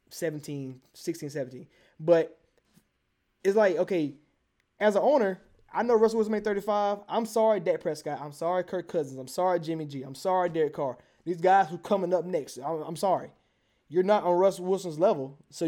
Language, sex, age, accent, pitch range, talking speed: English, male, 20-39, American, 155-200 Hz, 185 wpm